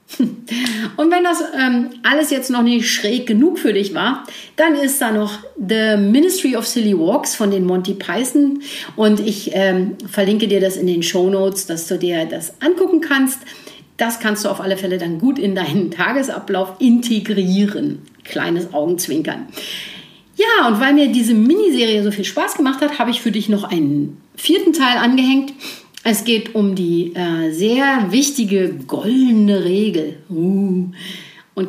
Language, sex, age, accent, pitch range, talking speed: German, female, 50-69, German, 185-270 Hz, 165 wpm